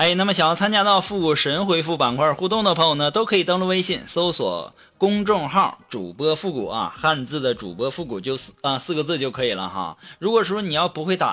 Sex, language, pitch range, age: male, Chinese, 160-215 Hz, 20-39